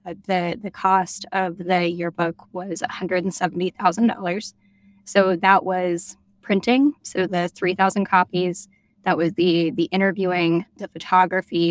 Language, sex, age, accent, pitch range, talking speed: English, female, 10-29, American, 180-200 Hz, 125 wpm